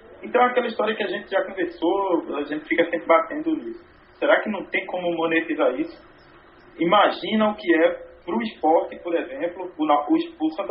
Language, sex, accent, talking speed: Portuguese, male, Brazilian, 180 wpm